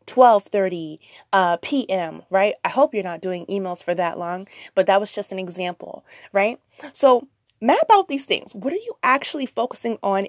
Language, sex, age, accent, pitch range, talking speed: English, female, 20-39, American, 185-245 Hz, 180 wpm